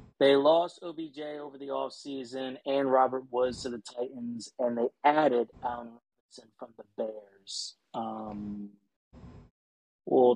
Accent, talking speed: American, 135 wpm